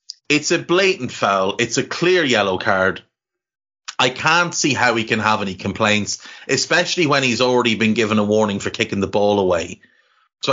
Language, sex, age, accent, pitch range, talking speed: English, male, 30-49, Irish, 110-145 Hz, 180 wpm